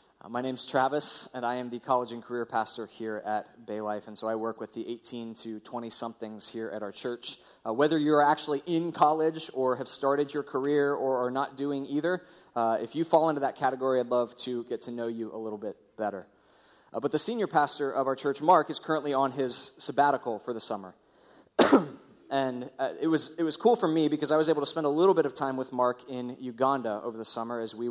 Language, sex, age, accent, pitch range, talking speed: English, male, 20-39, American, 115-150 Hz, 230 wpm